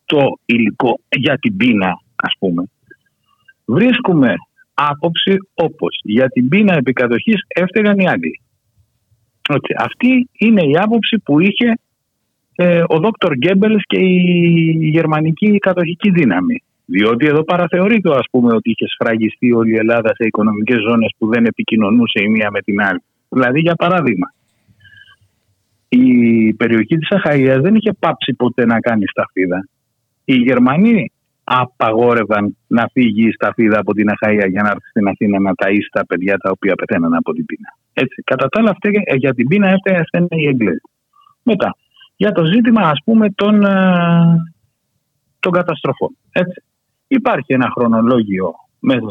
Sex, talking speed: male, 145 wpm